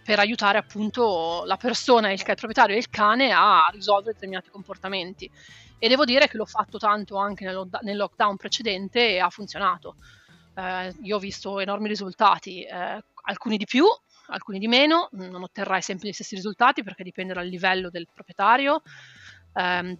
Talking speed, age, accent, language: 170 wpm, 30-49, native, Italian